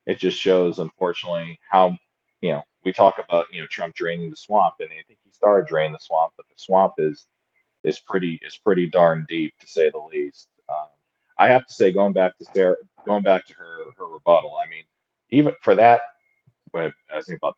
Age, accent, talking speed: 40-59, American, 210 wpm